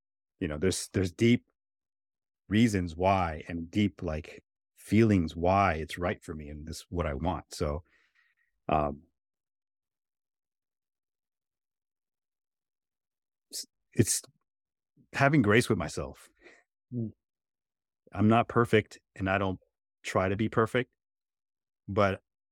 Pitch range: 85-105 Hz